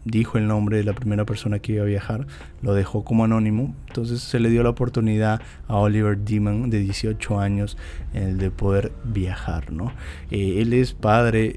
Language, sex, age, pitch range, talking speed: Spanish, male, 20-39, 100-120 Hz, 185 wpm